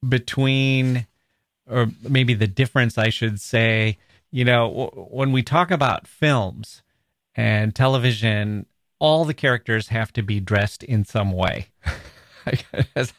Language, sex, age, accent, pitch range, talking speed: English, male, 30-49, American, 105-130 Hz, 130 wpm